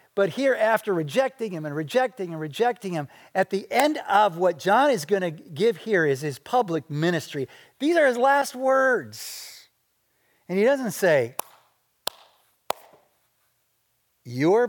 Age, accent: 50-69, American